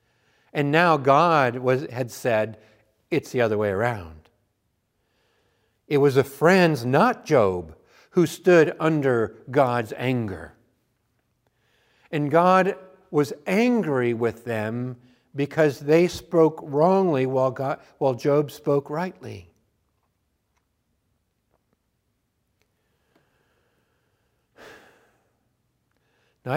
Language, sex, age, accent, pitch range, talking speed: English, male, 50-69, American, 120-180 Hz, 85 wpm